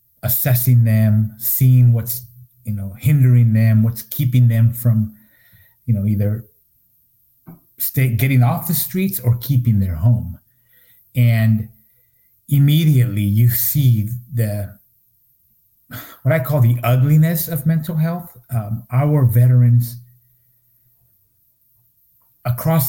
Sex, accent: male, American